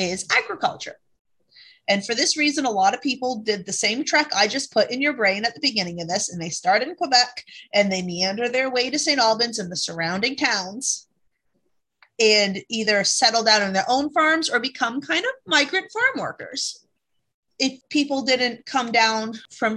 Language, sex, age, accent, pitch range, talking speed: English, female, 30-49, American, 195-250 Hz, 190 wpm